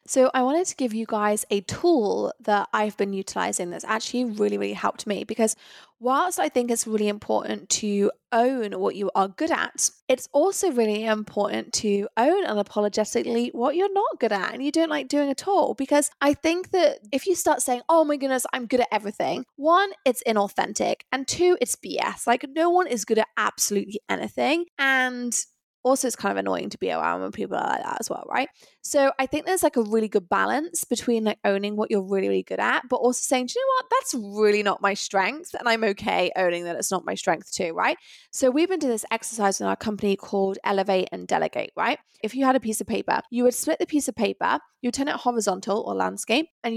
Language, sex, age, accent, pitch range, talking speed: English, female, 20-39, British, 205-280 Hz, 225 wpm